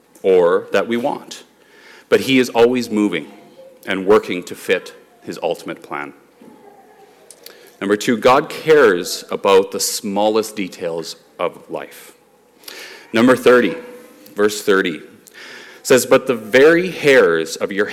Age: 30-49